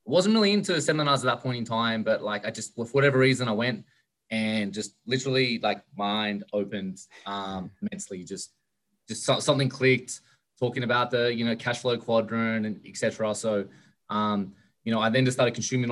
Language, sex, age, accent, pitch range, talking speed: English, male, 20-39, Australian, 105-120 Hz, 190 wpm